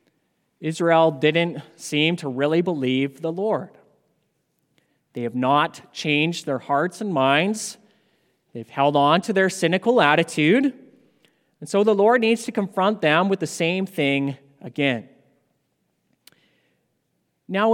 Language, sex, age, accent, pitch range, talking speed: English, male, 30-49, American, 150-215 Hz, 125 wpm